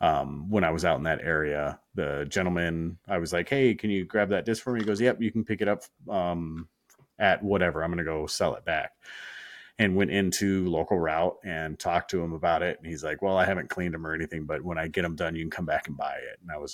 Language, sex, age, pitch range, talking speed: English, male, 30-49, 85-110 Hz, 275 wpm